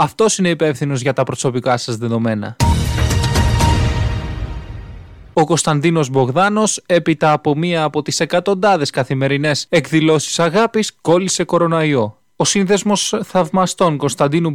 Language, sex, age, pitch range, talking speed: Greek, male, 20-39, 145-190 Hz, 105 wpm